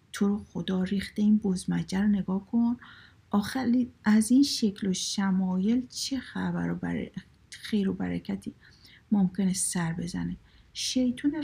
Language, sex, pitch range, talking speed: Persian, female, 185-225 Hz, 120 wpm